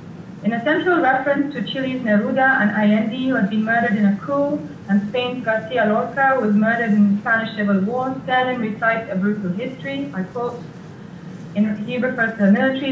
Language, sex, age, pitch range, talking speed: English, female, 20-39, 195-240 Hz, 180 wpm